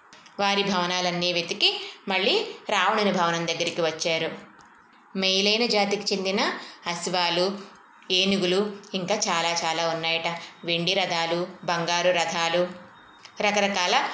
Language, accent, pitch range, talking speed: Telugu, native, 175-205 Hz, 95 wpm